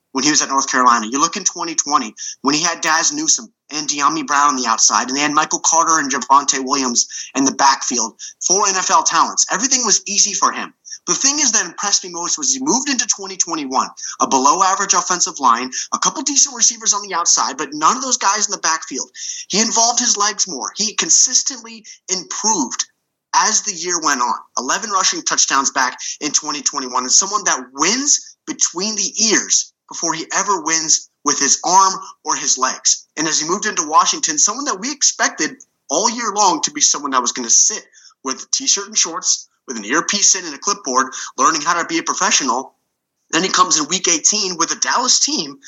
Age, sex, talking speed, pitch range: 30-49, male, 205 wpm, 150-235 Hz